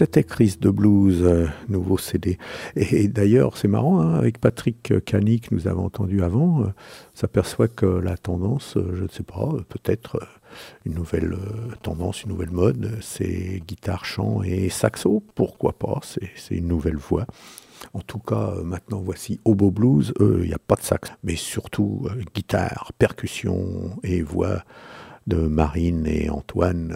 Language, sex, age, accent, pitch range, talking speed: French, male, 60-79, French, 85-105 Hz, 175 wpm